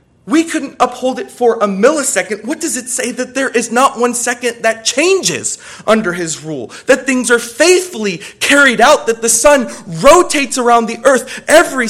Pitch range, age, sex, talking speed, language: 175-250 Hz, 30-49, male, 180 wpm, English